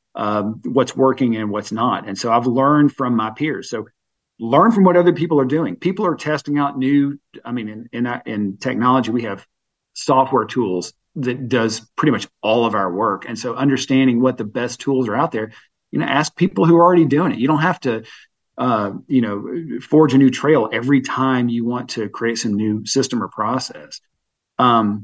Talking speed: 205 wpm